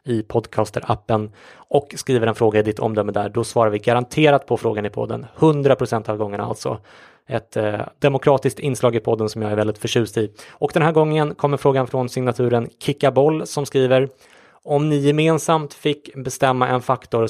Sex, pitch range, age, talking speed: male, 110-130 Hz, 20-39, 185 wpm